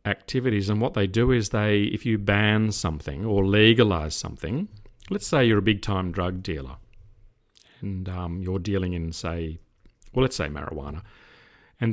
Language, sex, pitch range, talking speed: English, male, 95-110 Hz, 165 wpm